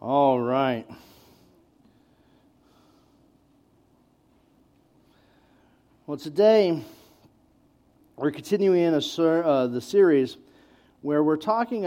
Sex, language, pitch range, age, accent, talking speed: male, English, 140-185 Hz, 40-59, American, 70 wpm